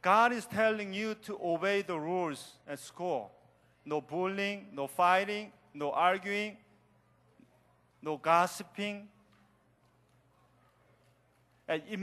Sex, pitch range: male, 180-225 Hz